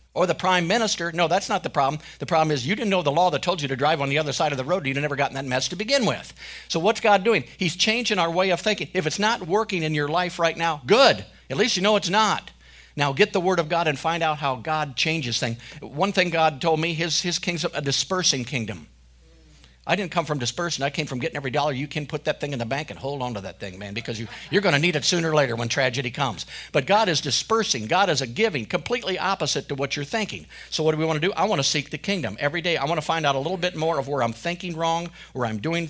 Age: 50-69